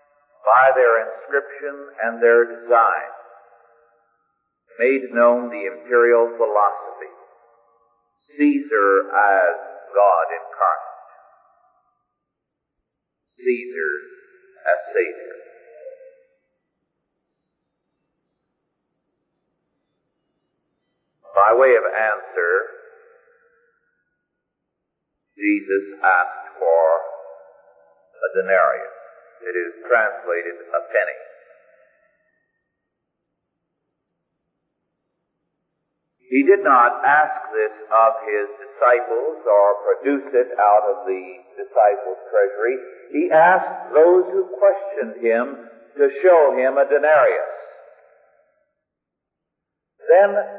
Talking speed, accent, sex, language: 70 wpm, American, male, English